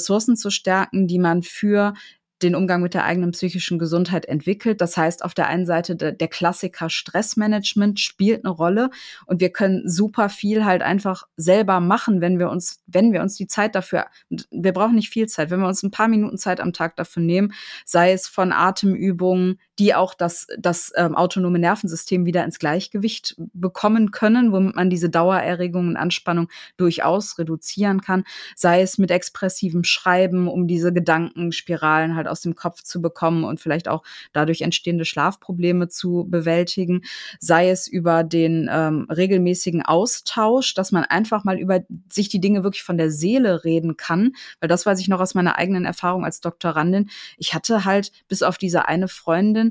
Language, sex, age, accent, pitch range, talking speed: German, female, 20-39, German, 170-195 Hz, 175 wpm